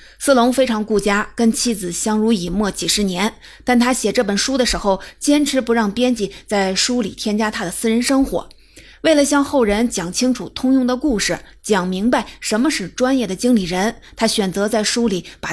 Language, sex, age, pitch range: Chinese, female, 30-49, 200-255 Hz